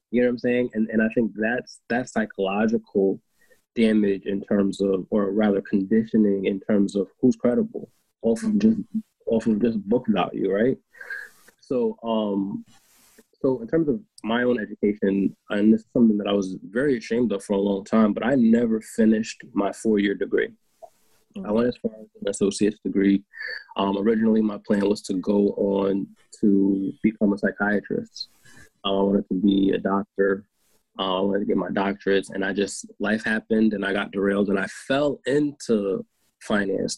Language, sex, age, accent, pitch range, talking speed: English, male, 20-39, American, 100-120 Hz, 180 wpm